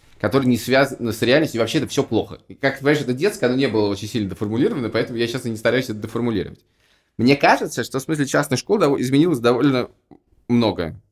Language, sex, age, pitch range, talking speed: Russian, male, 20-39, 110-140 Hz, 210 wpm